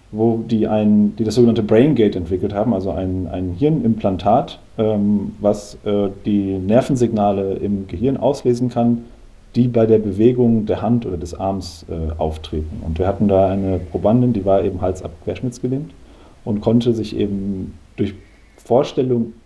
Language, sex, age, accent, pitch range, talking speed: German, male, 40-59, German, 95-115 Hz, 155 wpm